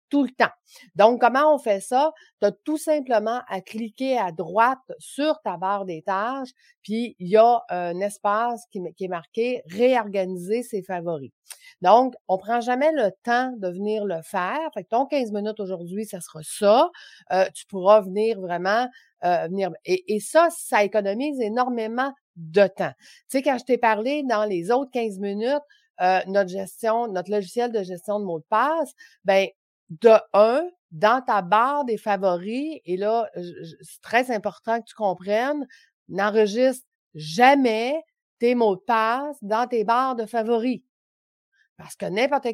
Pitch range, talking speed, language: 195-255 Hz, 170 wpm, French